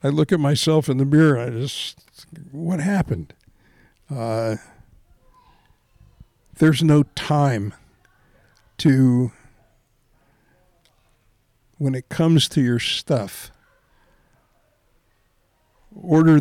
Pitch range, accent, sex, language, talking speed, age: 115-140 Hz, American, male, English, 85 wpm, 60-79